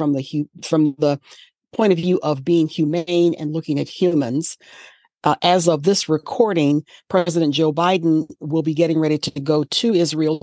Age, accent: 50-69, American